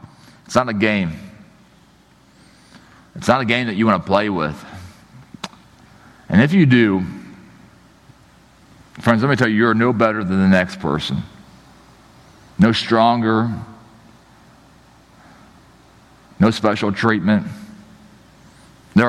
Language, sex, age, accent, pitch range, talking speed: English, male, 40-59, American, 100-130 Hz, 115 wpm